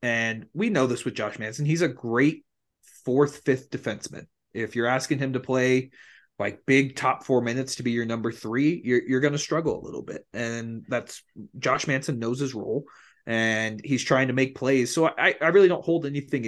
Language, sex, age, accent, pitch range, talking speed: English, male, 30-49, American, 115-135 Hz, 205 wpm